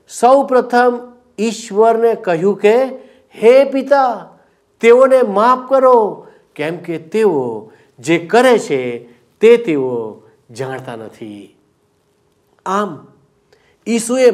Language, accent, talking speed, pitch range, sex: Gujarati, native, 55 wpm, 145-245 Hz, male